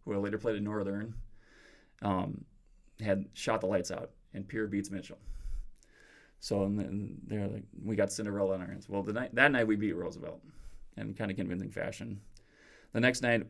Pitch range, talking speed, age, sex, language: 100-115 Hz, 185 wpm, 20-39, male, English